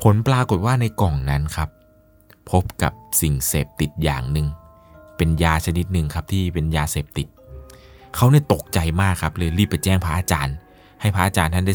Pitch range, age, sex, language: 85-120 Hz, 20-39, male, Thai